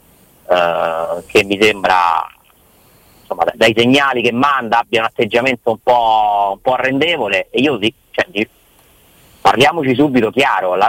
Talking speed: 145 wpm